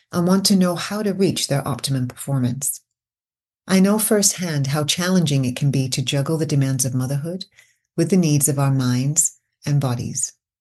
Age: 30-49